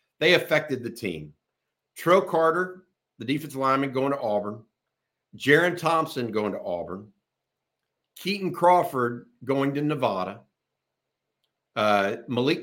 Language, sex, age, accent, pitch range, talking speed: English, male, 50-69, American, 115-150 Hz, 115 wpm